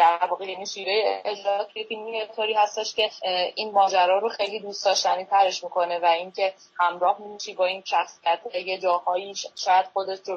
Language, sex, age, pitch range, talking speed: Persian, female, 10-29, 185-220 Hz, 170 wpm